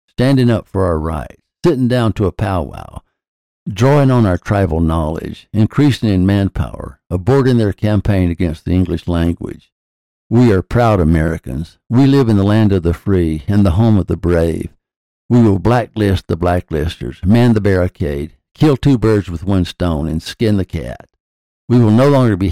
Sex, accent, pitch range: male, American, 85-110 Hz